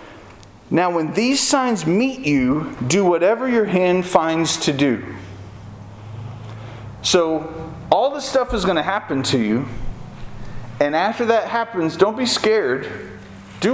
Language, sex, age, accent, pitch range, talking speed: English, male, 40-59, American, 120-175 Hz, 135 wpm